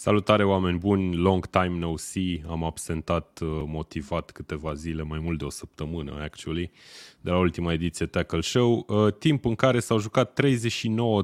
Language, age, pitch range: Romanian, 20-39, 80-95 Hz